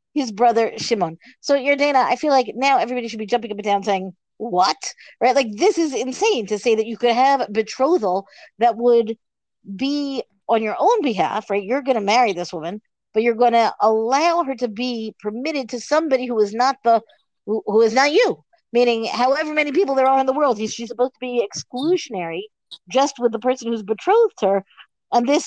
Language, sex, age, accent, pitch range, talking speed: English, female, 50-69, American, 210-265 Hz, 210 wpm